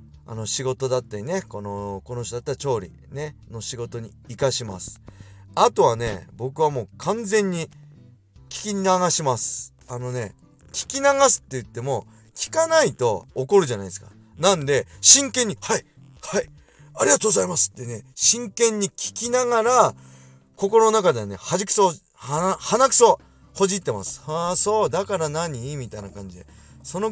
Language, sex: Japanese, male